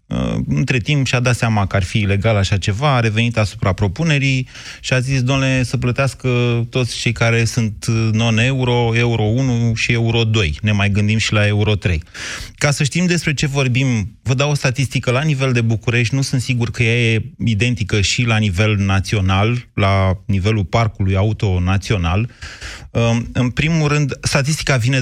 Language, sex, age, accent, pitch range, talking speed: Romanian, male, 30-49, native, 105-130 Hz, 175 wpm